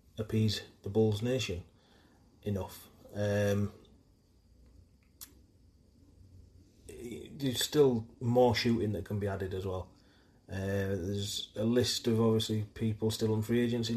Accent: British